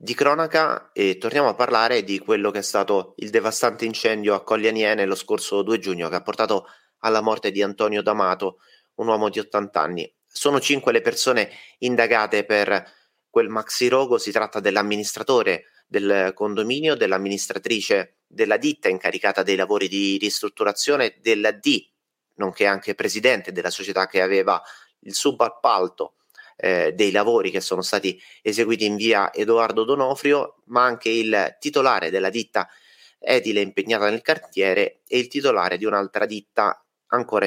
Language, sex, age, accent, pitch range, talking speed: Italian, male, 30-49, native, 105-140 Hz, 150 wpm